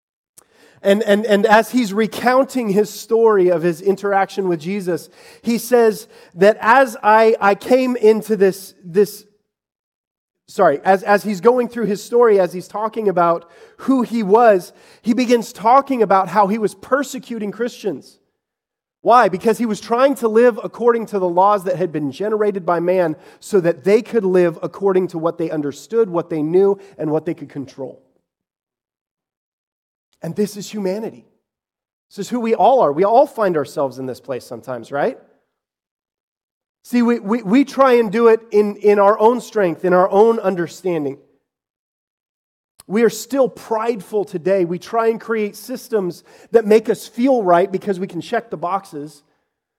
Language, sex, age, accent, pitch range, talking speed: English, male, 30-49, American, 180-225 Hz, 170 wpm